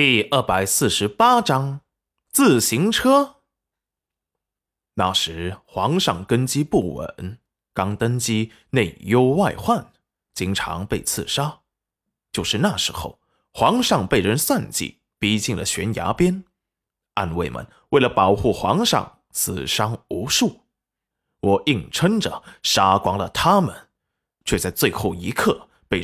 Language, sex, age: Chinese, male, 20-39